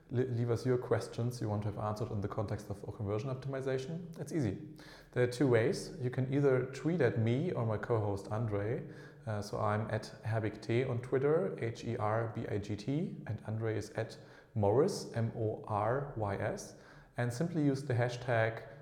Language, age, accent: English, 30-49, German